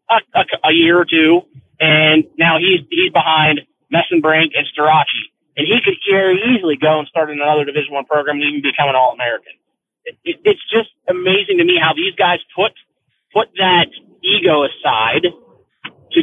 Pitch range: 155-220 Hz